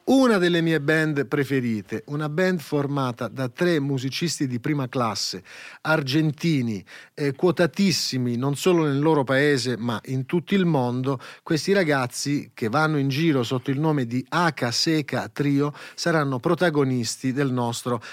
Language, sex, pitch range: Italian, male, 125-155 Hz